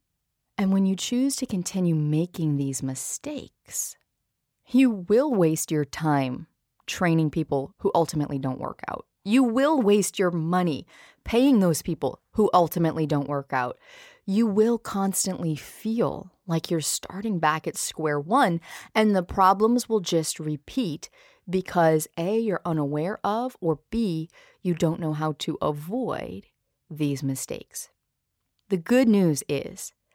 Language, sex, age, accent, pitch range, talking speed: English, female, 30-49, American, 155-220 Hz, 140 wpm